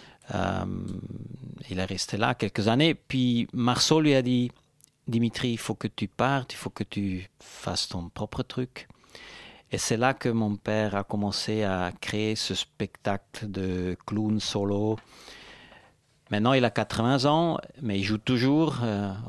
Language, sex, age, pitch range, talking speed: French, male, 50-69, 100-125 Hz, 160 wpm